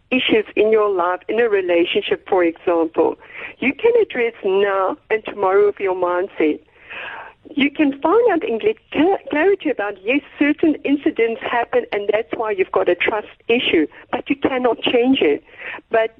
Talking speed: 165 wpm